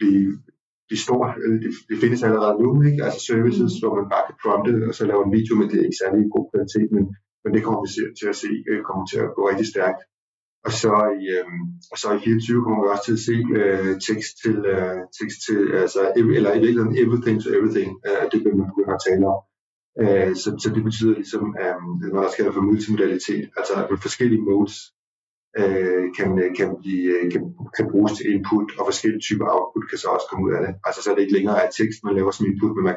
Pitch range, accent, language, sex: 100-110 Hz, native, Danish, male